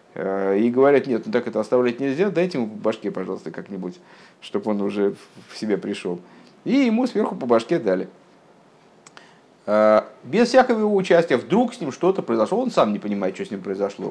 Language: Russian